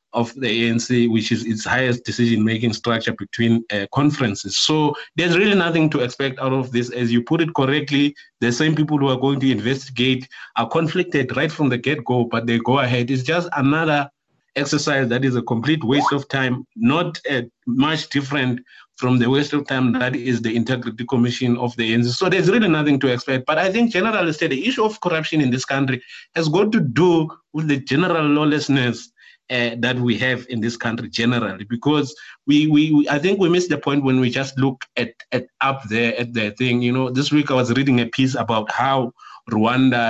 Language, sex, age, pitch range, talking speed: English, male, 30-49, 120-140 Hz, 205 wpm